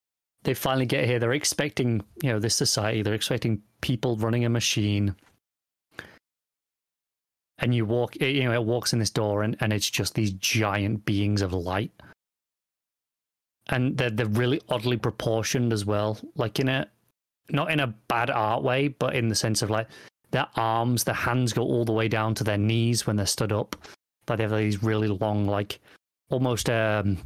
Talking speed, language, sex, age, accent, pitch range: 185 wpm, English, male, 30-49, British, 105-125 Hz